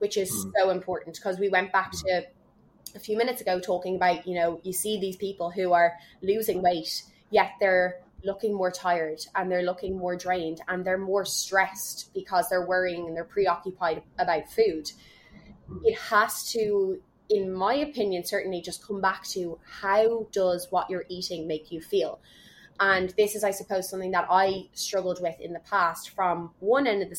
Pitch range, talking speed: 175-200 Hz, 185 wpm